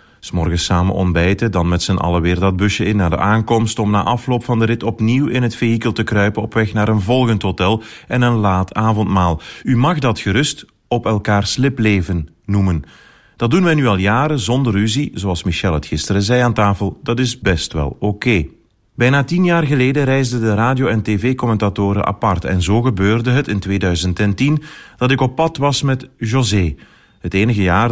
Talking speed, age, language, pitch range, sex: 195 wpm, 30-49, Dutch, 95-120 Hz, male